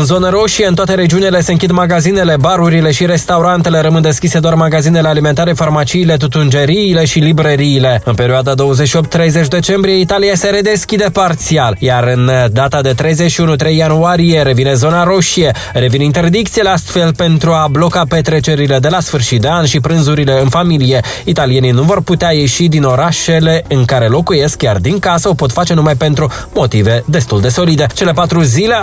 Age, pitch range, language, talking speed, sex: 20-39, 135-175 Hz, Romanian, 165 wpm, male